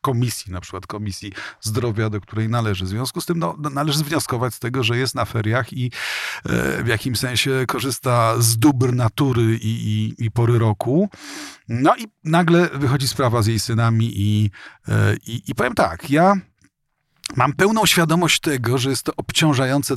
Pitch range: 110-145 Hz